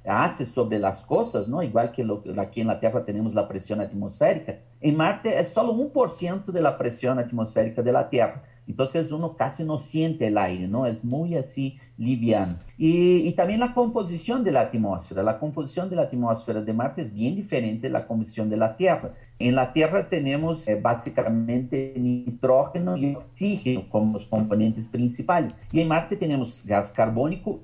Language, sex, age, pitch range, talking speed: Spanish, male, 50-69, 110-155 Hz, 180 wpm